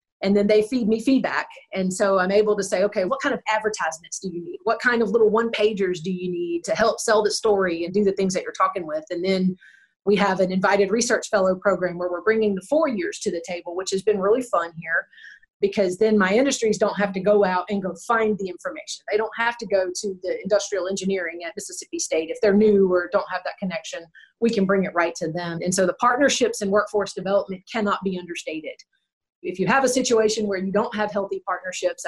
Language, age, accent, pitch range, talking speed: English, 30-49, American, 190-225 Hz, 240 wpm